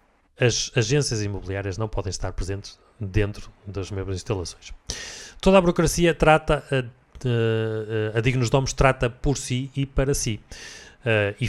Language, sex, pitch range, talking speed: Portuguese, male, 100-120 Hz, 135 wpm